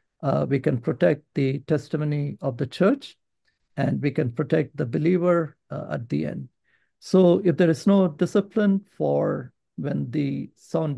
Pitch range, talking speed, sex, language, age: 140-175 Hz, 160 wpm, male, English, 60-79